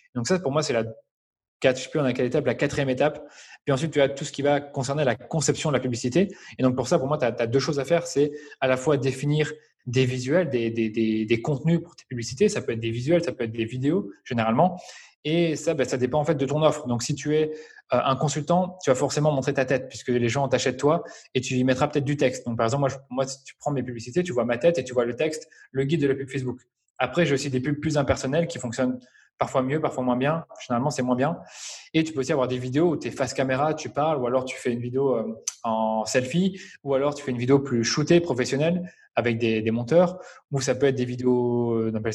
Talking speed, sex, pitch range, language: 265 wpm, male, 125-150 Hz, French